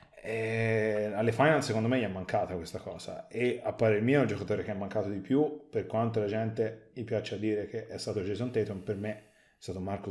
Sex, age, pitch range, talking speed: male, 30-49, 100-115 Hz, 225 wpm